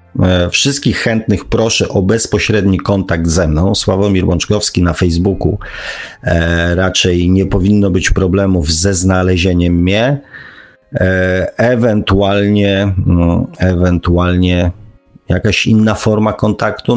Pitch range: 90-105 Hz